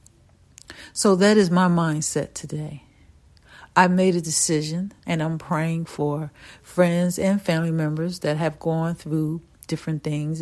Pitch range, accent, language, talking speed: 155-200 Hz, American, English, 140 wpm